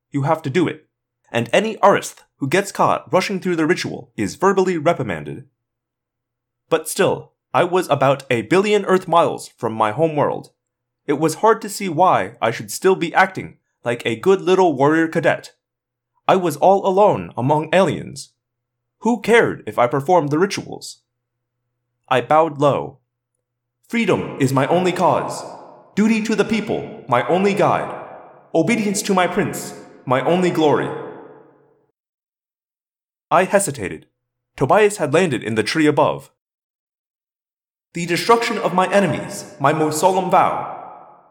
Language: English